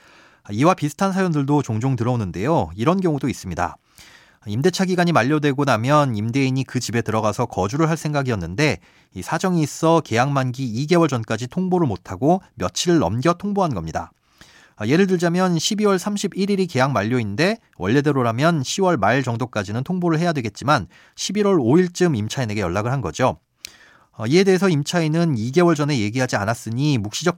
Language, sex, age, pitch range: Korean, male, 30-49, 115-170 Hz